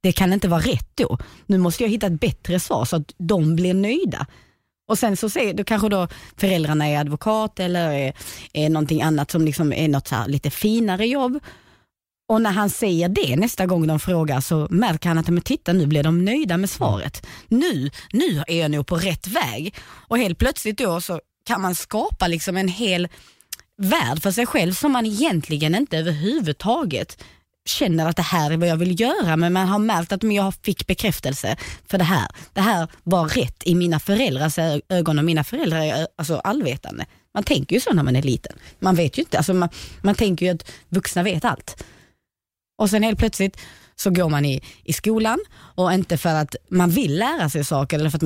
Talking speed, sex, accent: 210 wpm, female, native